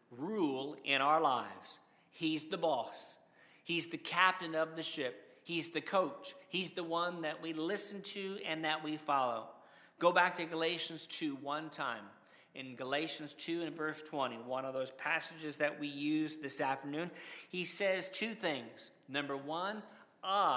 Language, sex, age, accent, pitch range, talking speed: English, male, 50-69, American, 150-185 Hz, 160 wpm